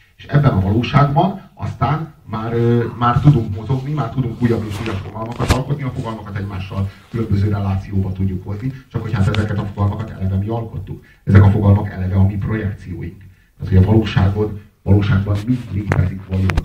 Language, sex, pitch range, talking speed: Hungarian, male, 95-110 Hz, 175 wpm